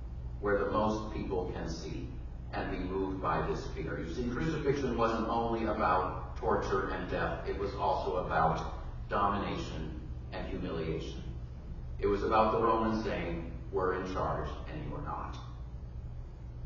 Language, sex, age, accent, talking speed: English, male, 40-59, American, 145 wpm